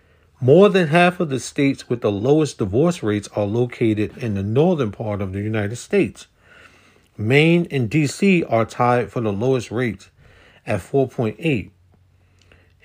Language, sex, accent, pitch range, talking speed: English, male, American, 105-150 Hz, 150 wpm